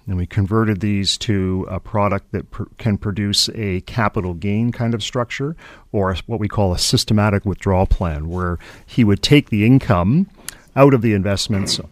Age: 40-59